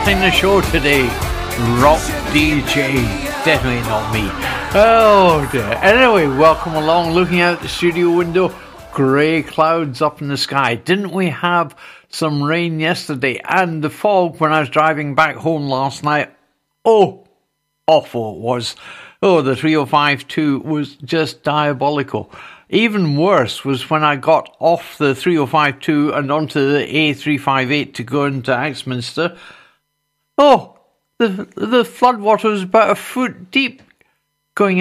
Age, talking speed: 60-79, 140 wpm